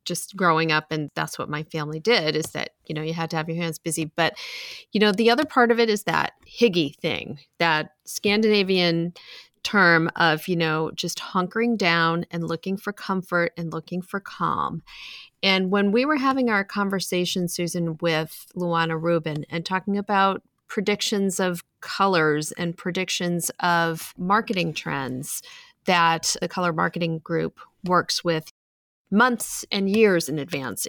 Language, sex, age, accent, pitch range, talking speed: English, female, 30-49, American, 165-195 Hz, 160 wpm